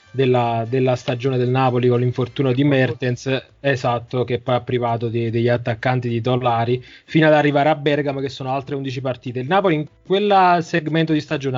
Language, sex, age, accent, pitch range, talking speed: Italian, male, 20-39, native, 125-150 Hz, 185 wpm